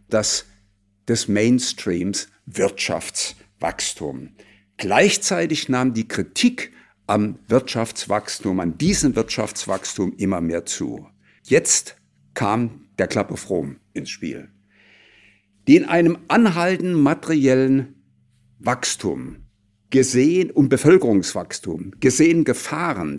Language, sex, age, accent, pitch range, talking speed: German, male, 60-79, German, 100-145 Hz, 95 wpm